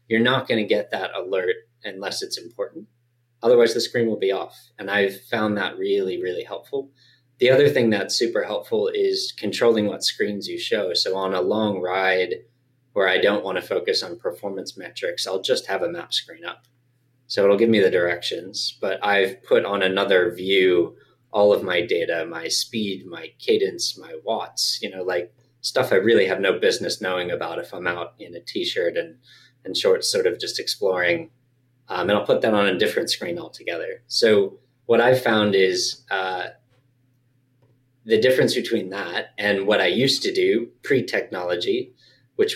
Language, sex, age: English, male, 20-39